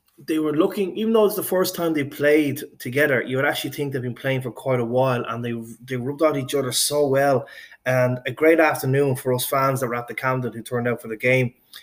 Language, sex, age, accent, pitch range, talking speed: English, male, 20-39, Irish, 120-145 Hz, 255 wpm